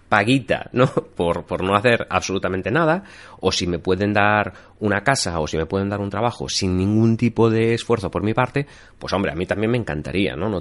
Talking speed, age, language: 220 wpm, 30-49, Spanish